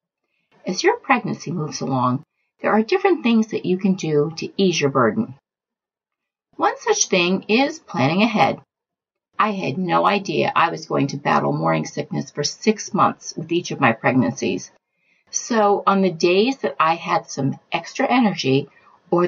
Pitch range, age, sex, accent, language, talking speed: 160-230 Hz, 50-69, female, American, English, 165 wpm